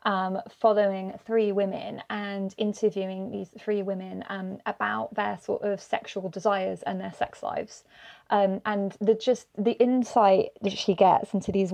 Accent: British